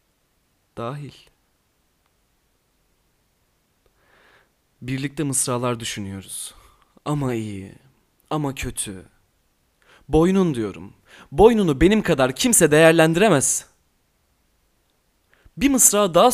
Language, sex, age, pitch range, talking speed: Turkish, male, 30-49, 125-195 Hz, 65 wpm